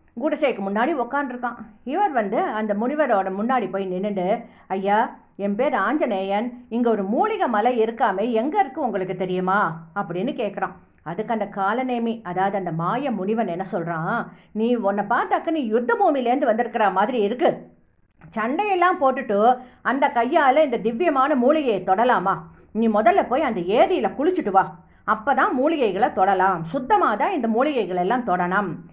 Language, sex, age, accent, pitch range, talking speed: English, female, 50-69, Indian, 205-280 Hz, 145 wpm